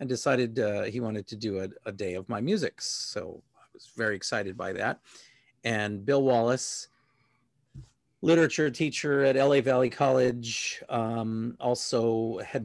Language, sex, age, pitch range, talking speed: English, male, 40-59, 110-130 Hz, 150 wpm